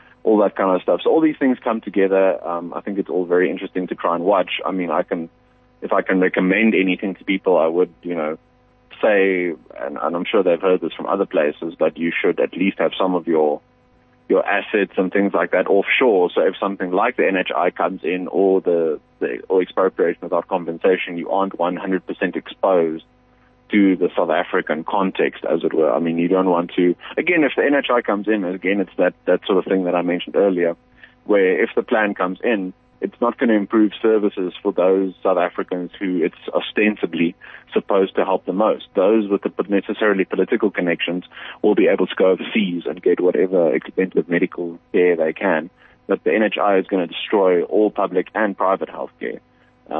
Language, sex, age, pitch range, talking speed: English, male, 30-49, 90-100 Hz, 205 wpm